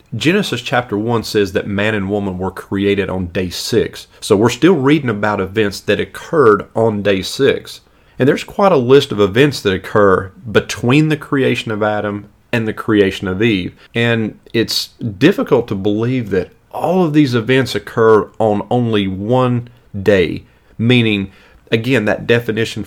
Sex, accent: male, American